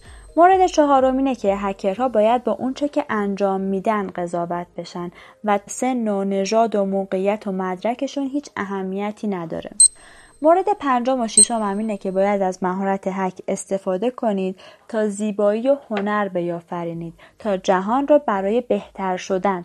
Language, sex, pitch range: Persian, female, 190-245 Hz